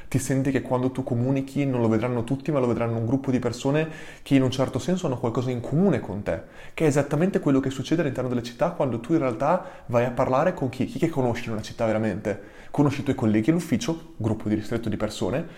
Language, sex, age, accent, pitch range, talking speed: Italian, male, 20-39, native, 120-160 Hz, 245 wpm